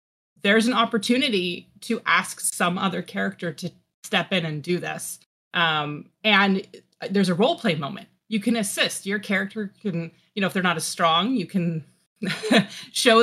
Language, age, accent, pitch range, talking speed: English, 30-49, American, 165-210 Hz, 170 wpm